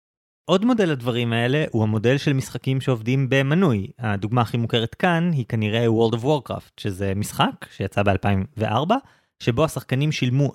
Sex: male